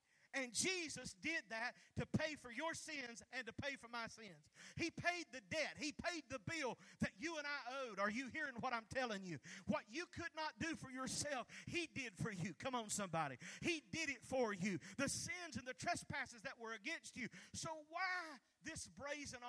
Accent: American